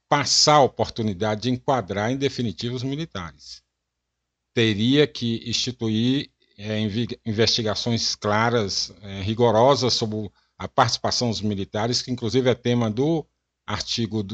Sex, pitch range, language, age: male, 100-125 Hz, Portuguese, 60-79